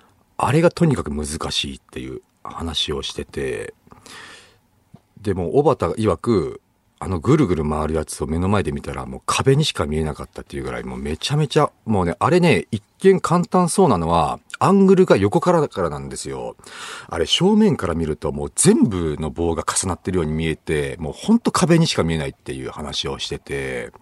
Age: 50-69